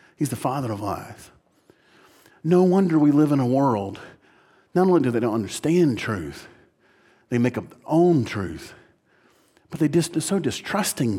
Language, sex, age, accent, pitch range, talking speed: English, male, 50-69, American, 115-155 Hz, 160 wpm